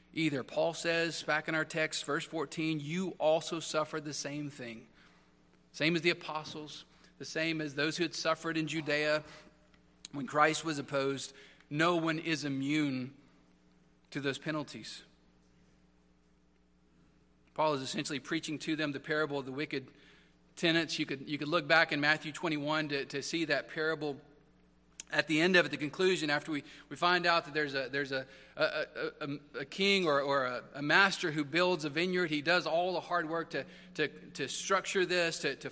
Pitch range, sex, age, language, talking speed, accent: 145-175 Hz, male, 40-59, English, 185 wpm, American